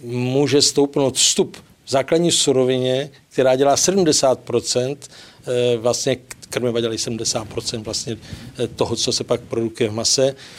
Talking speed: 120 wpm